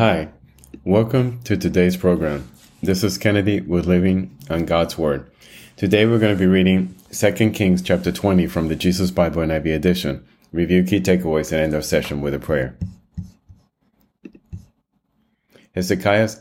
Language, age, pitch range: English, 30-49, 85-100 Hz